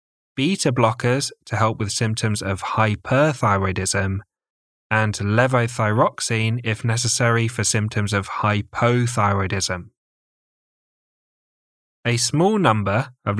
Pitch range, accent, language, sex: 105-125 Hz, British, English, male